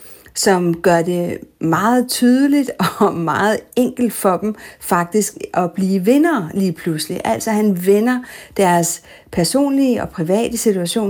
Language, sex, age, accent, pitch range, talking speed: Danish, female, 50-69, native, 185-235 Hz, 130 wpm